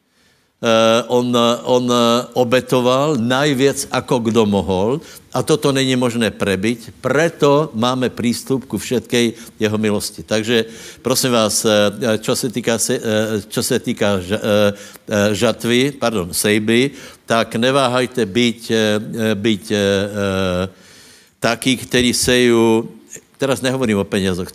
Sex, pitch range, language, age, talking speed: male, 105-120 Hz, Slovak, 60-79, 100 wpm